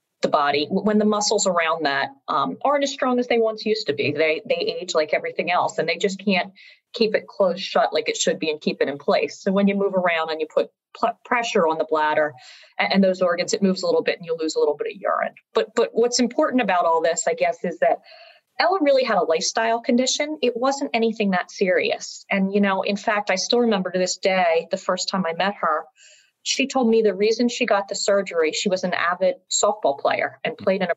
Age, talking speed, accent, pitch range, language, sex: 30-49, 250 wpm, American, 175-245 Hz, English, female